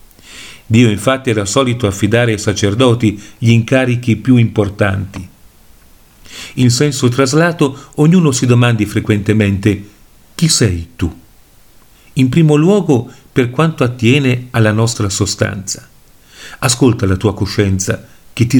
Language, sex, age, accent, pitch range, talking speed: Italian, male, 50-69, native, 105-140 Hz, 115 wpm